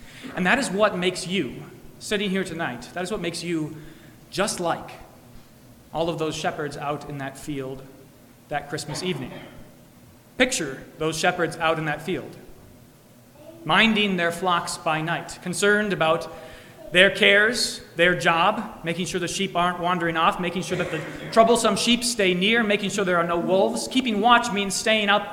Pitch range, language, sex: 145-185 Hz, English, male